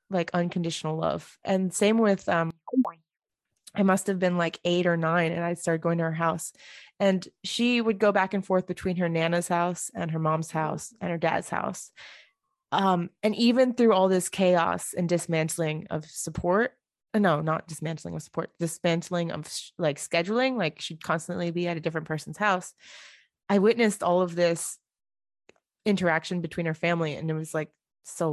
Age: 20-39